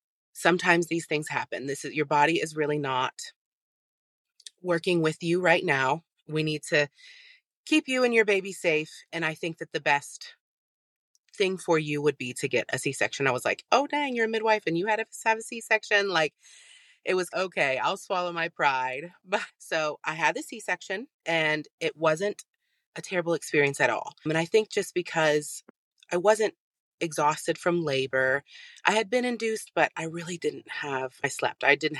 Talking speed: 190 wpm